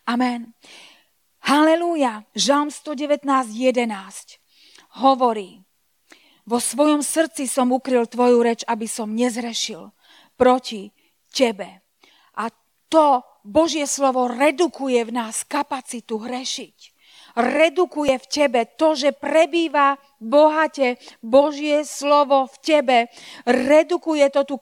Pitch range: 240-295 Hz